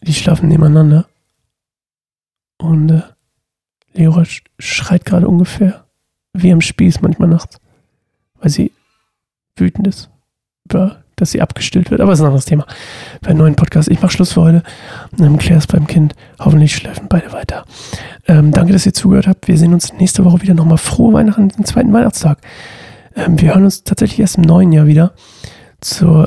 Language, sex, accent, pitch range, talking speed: German, male, German, 160-185 Hz, 180 wpm